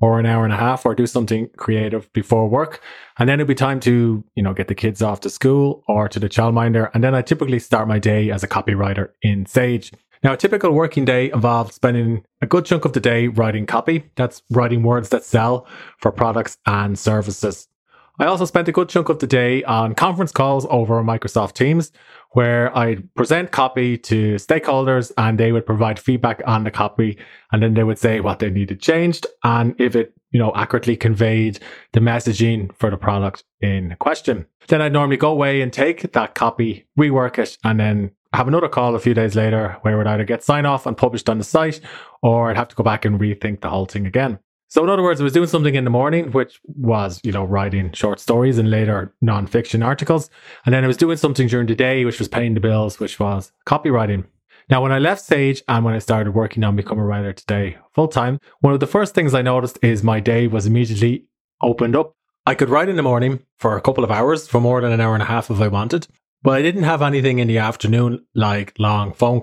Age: 20-39